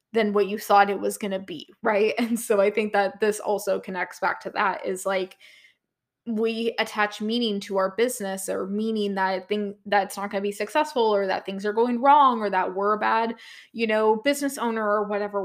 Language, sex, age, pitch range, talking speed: English, female, 20-39, 200-250 Hz, 215 wpm